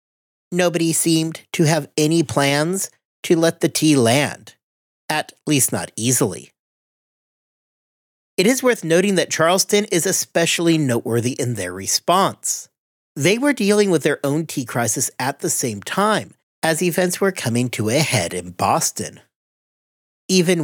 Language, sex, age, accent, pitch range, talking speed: English, male, 40-59, American, 125-180 Hz, 140 wpm